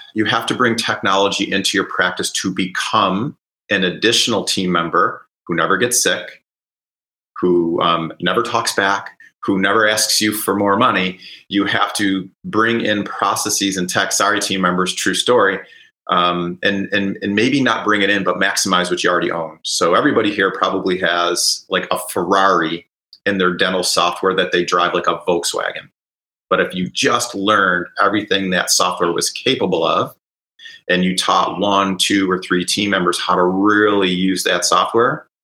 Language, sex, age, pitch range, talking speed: English, male, 30-49, 90-105 Hz, 175 wpm